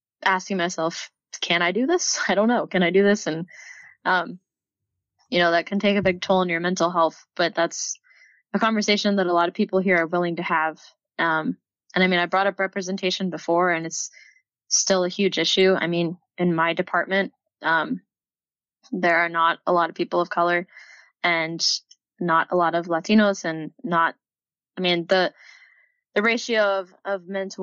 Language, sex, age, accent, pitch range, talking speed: English, female, 10-29, American, 170-200 Hz, 190 wpm